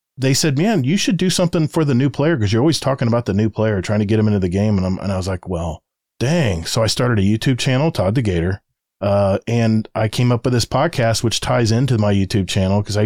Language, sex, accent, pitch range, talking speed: English, male, American, 100-125 Hz, 270 wpm